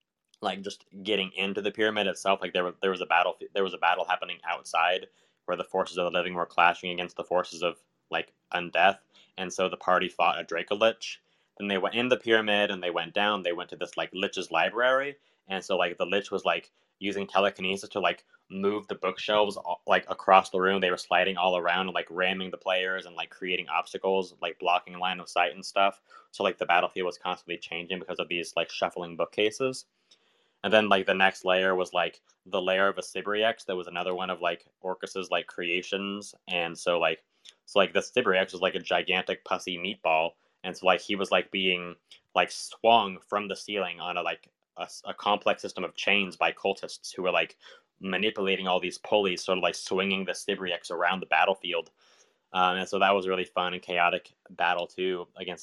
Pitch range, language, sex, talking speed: 90-100 Hz, English, male, 215 wpm